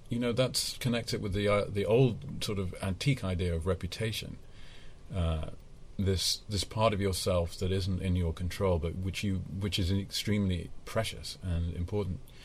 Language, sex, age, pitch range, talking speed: English, male, 40-59, 85-105 Hz, 170 wpm